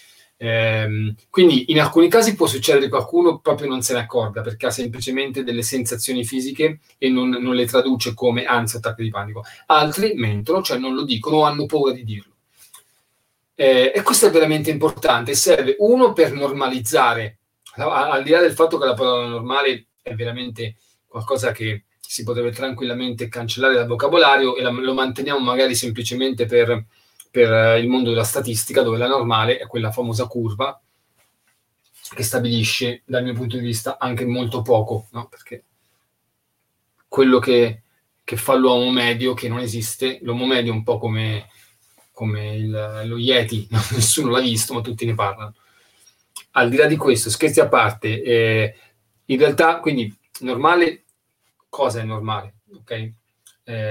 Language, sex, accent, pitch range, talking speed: Italian, male, native, 115-130 Hz, 165 wpm